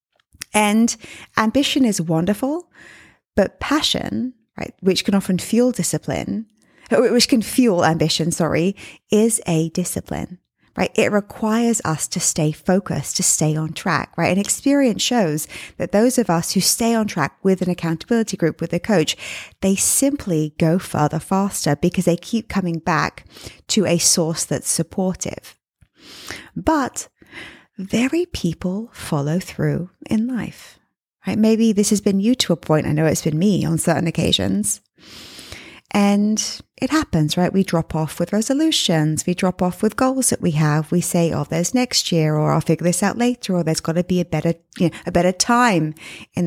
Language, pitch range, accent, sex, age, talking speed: English, 165-230 Hz, British, female, 20-39, 175 wpm